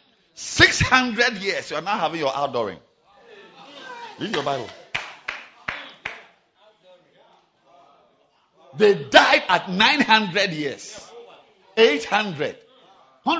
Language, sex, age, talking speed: English, male, 50-69, 80 wpm